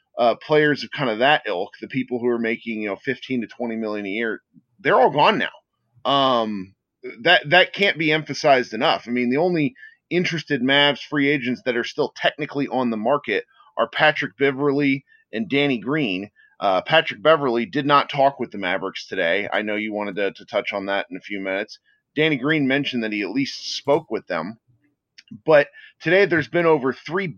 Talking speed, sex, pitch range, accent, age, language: 200 wpm, male, 115-150 Hz, American, 30-49, English